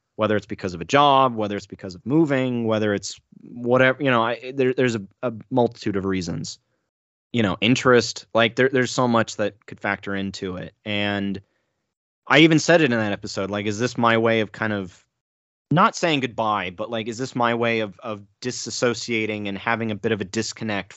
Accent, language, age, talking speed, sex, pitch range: American, English, 30-49, 195 wpm, male, 100-120 Hz